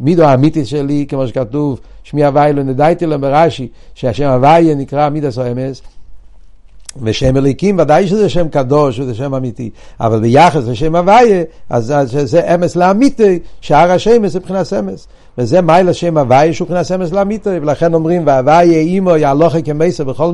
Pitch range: 145-190 Hz